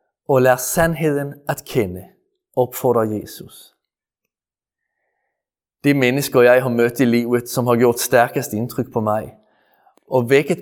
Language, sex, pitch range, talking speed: Danish, male, 120-145 Hz, 130 wpm